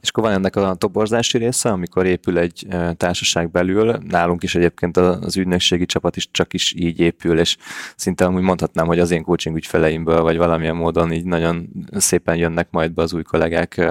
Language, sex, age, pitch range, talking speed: Hungarian, male, 20-39, 85-100 Hz, 190 wpm